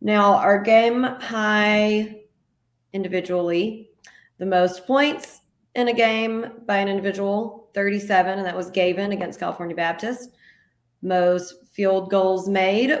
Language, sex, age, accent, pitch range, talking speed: English, female, 30-49, American, 180-225 Hz, 120 wpm